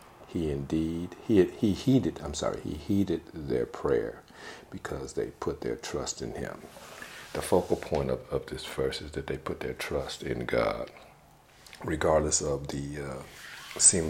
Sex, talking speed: male, 160 wpm